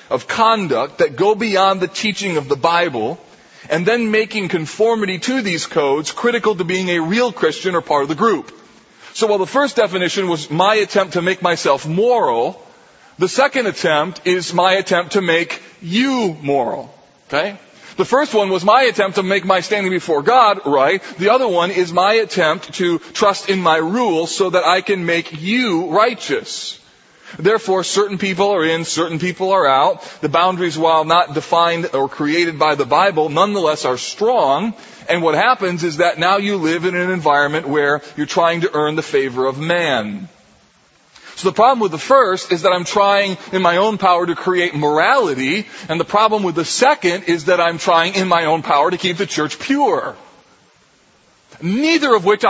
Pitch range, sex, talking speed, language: 165-205 Hz, male, 185 wpm, English